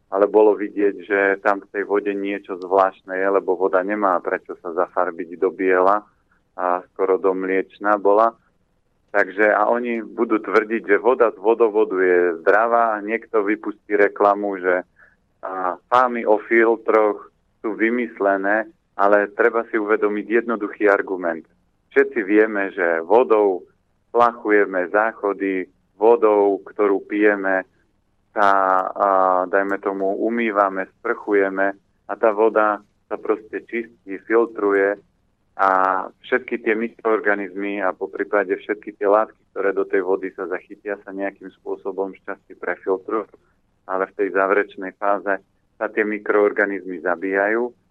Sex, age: male, 40-59